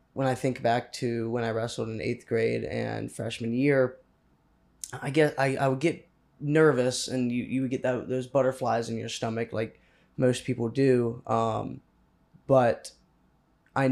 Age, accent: 20-39, American